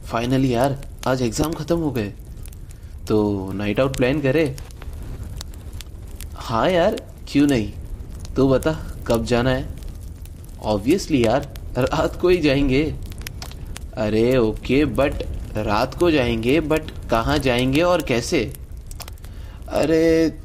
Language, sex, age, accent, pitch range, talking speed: Hindi, male, 20-39, native, 90-140 Hz, 120 wpm